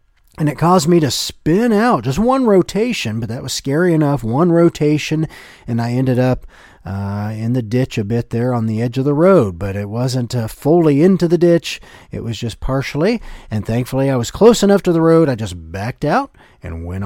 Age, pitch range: 40-59, 115-170 Hz